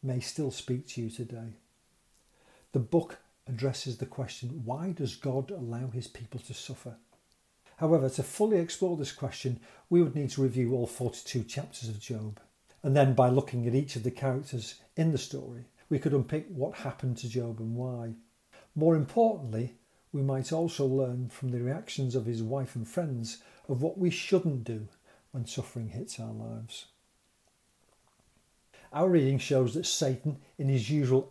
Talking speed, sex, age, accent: 170 wpm, male, 50-69, British